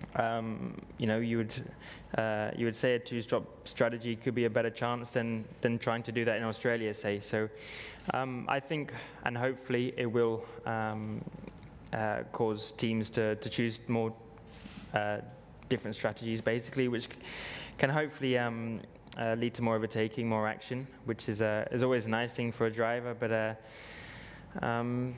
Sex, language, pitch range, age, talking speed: male, English, 110-120 Hz, 10-29, 175 wpm